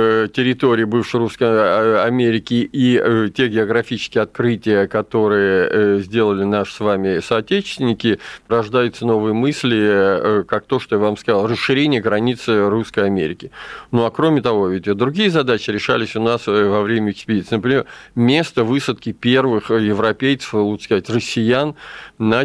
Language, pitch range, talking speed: Russian, 105-125 Hz, 130 wpm